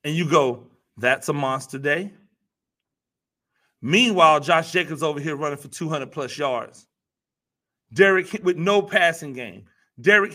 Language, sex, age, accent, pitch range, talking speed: English, male, 30-49, American, 155-205 Hz, 135 wpm